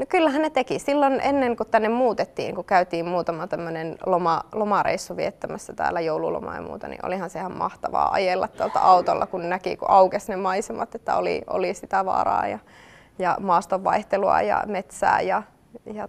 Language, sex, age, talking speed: Finnish, female, 20-39, 170 wpm